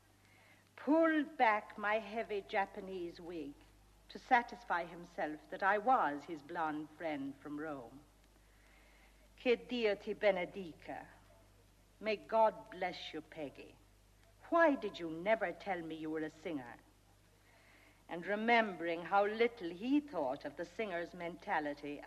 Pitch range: 145-235 Hz